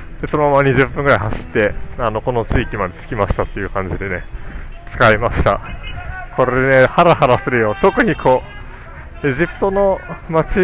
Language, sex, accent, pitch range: Japanese, male, native, 110-170 Hz